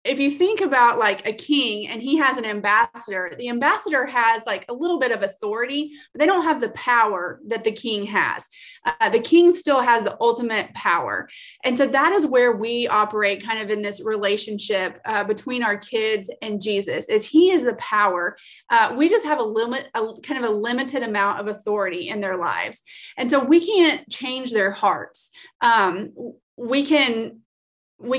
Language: English